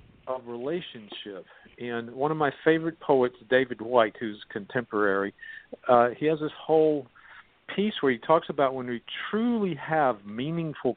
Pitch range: 110-145 Hz